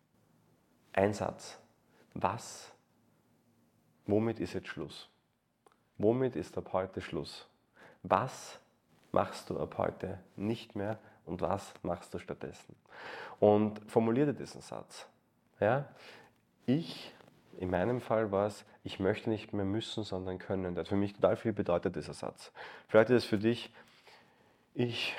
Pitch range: 95-110 Hz